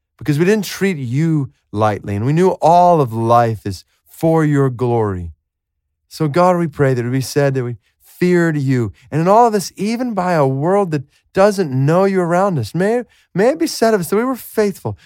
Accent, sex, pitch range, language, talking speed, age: American, male, 120-190 Hz, English, 215 wpm, 30-49